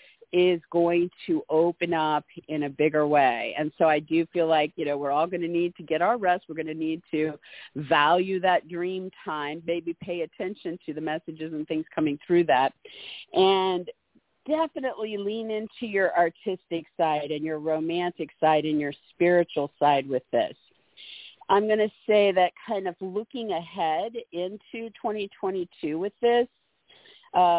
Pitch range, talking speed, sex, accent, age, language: 155-190 Hz, 165 wpm, female, American, 50-69, English